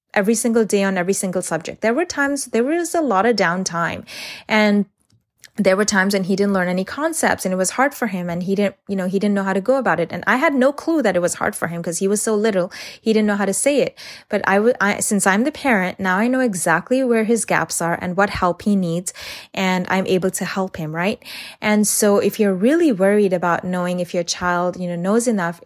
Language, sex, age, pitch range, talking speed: English, female, 20-39, 180-225 Hz, 255 wpm